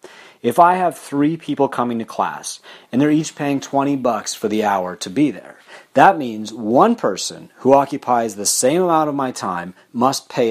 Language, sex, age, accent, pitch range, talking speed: English, male, 40-59, American, 110-140 Hz, 195 wpm